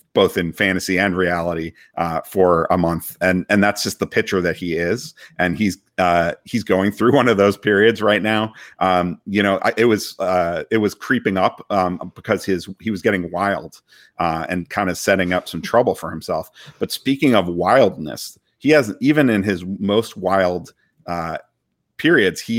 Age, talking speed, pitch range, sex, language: 40-59, 190 wpm, 90-105 Hz, male, English